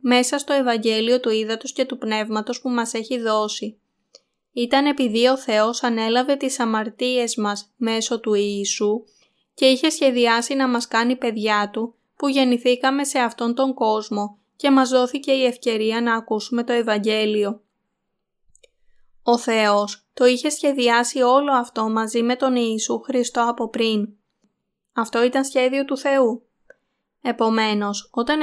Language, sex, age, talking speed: Greek, female, 20-39, 140 wpm